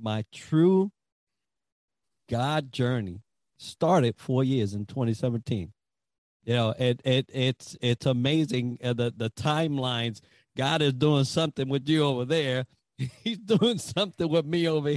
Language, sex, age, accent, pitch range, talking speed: English, male, 50-69, American, 115-155 Hz, 130 wpm